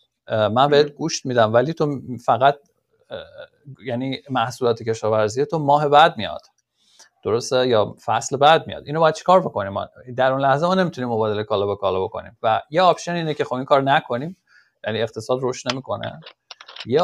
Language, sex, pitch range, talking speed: Persian, male, 115-155 Hz, 170 wpm